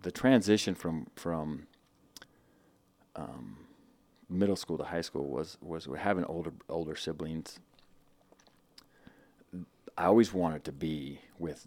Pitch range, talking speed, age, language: 80-90 Hz, 115 wpm, 40-59, English